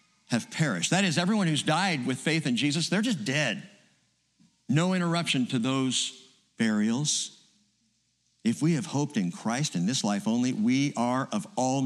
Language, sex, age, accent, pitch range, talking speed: English, male, 60-79, American, 150-215 Hz, 160 wpm